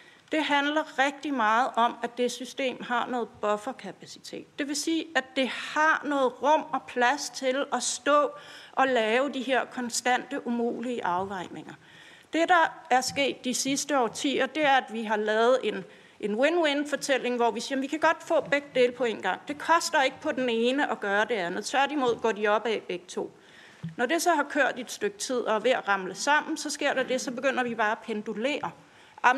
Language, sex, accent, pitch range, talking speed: Danish, female, native, 230-280 Hz, 205 wpm